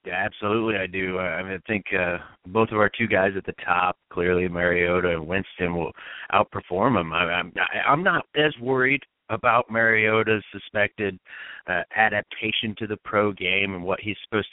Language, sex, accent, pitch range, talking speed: English, male, American, 100-130 Hz, 175 wpm